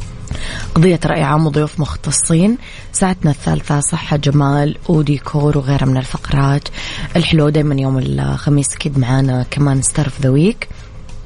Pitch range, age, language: 130-150 Hz, 20-39, English